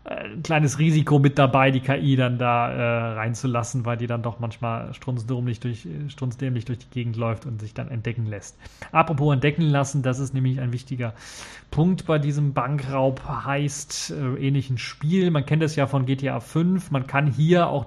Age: 30-49